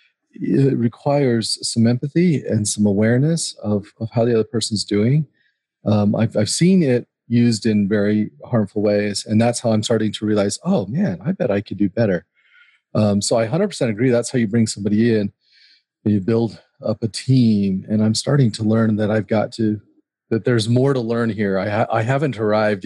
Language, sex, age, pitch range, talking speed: English, male, 30-49, 105-125 Hz, 195 wpm